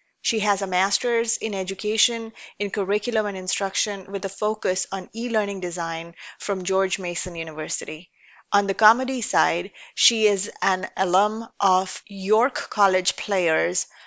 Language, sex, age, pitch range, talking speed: English, female, 30-49, 185-220 Hz, 135 wpm